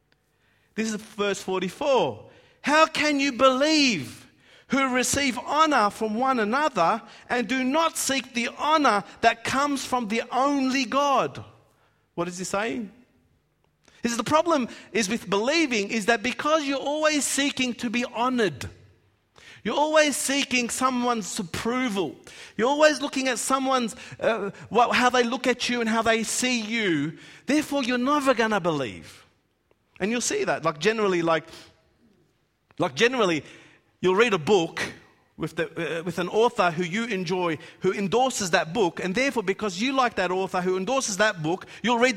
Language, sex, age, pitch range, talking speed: English, male, 50-69, 200-270 Hz, 155 wpm